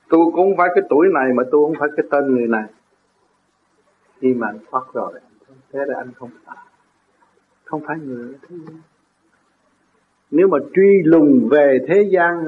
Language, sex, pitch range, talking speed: Vietnamese, male, 140-205 Hz, 165 wpm